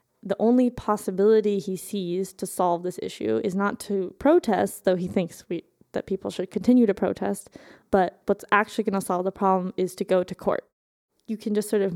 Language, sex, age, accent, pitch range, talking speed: English, female, 20-39, American, 190-225 Hz, 205 wpm